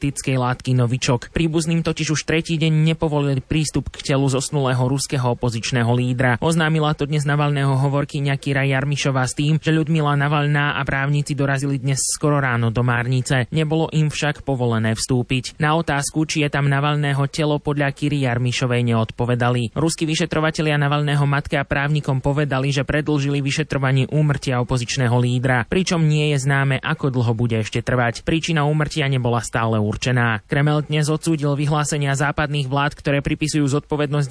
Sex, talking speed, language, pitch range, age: male, 150 wpm, Slovak, 130-150 Hz, 20-39